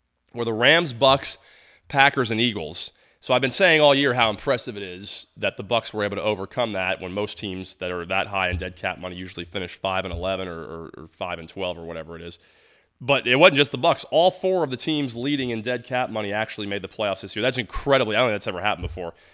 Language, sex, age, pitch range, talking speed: English, male, 30-49, 95-135 Hz, 255 wpm